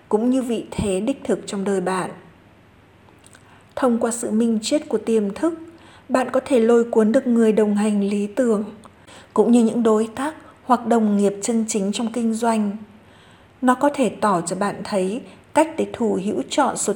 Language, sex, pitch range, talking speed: Vietnamese, female, 195-235 Hz, 190 wpm